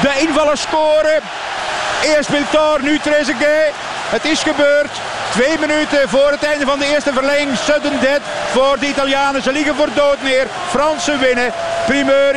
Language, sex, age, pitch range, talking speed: Dutch, male, 50-69, 235-280 Hz, 155 wpm